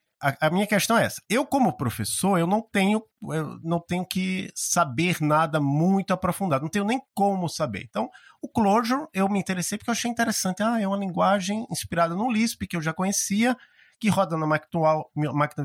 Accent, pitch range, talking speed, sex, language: Brazilian, 130-205 Hz, 190 wpm, male, Portuguese